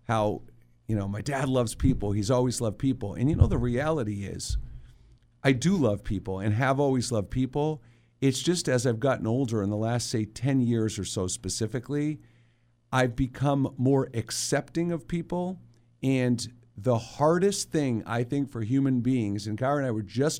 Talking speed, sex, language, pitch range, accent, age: 180 wpm, male, English, 115-140 Hz, American, 50-69